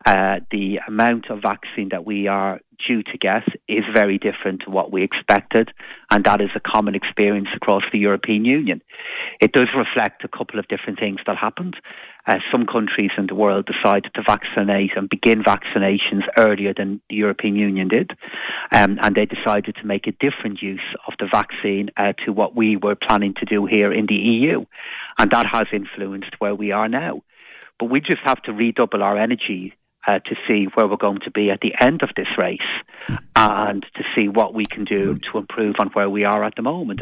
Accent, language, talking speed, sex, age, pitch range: British, English, 205 wpm, male, 30-49, 100-115 Hz